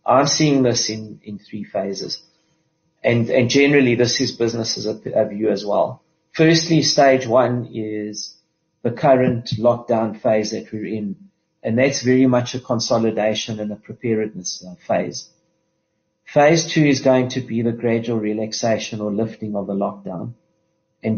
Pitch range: 105-125 Hz